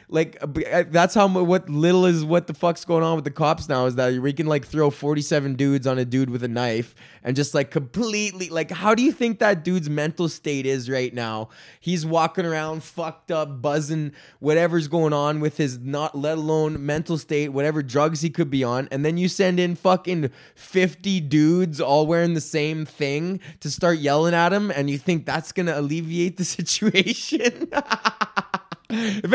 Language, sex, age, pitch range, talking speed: English, male, 20-39, 135-185 Hz, 190 wpm